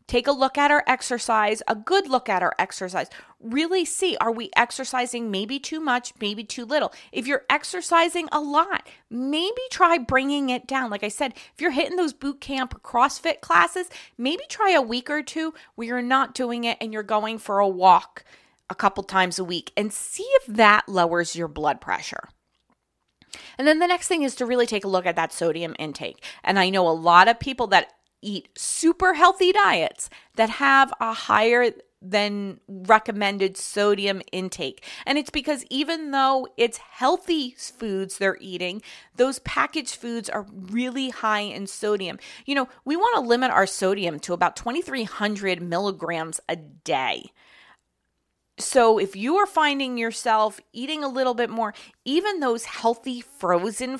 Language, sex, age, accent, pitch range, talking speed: English, female, 30-49, American, 200-275 Hz, 175 wpm